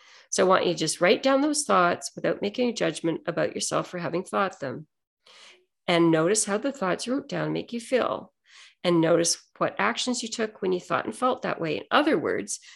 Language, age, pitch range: English, 40-59, 165-240 Hz